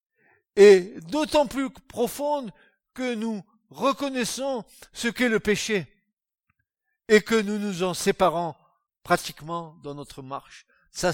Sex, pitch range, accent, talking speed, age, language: male, 125-190 Hz, French, 120 wpm, 60-79, French